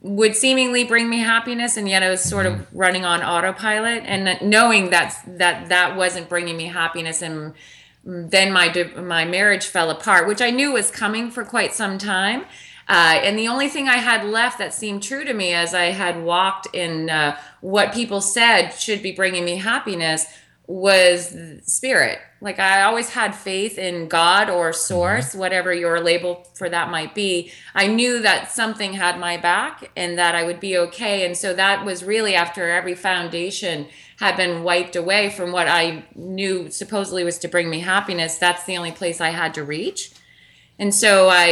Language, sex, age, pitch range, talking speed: English, female, 30-49, 175-215 Hz, 190 wpm